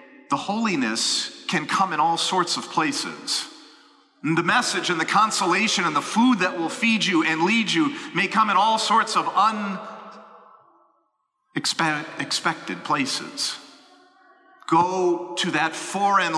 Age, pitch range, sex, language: 40-59, 170-220 Hz, male, English